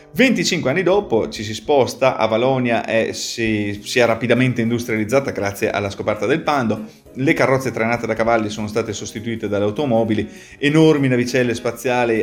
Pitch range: 105-120 Hz